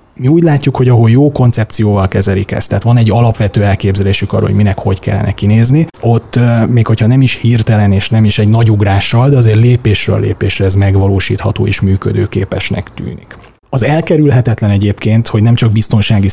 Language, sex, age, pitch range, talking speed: Hungarian, male, 30-49, 100-120 Hz, 175 wpm